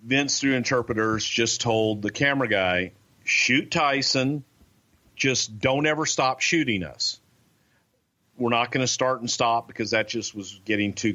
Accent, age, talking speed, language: American, 40-59, 155 wpm, English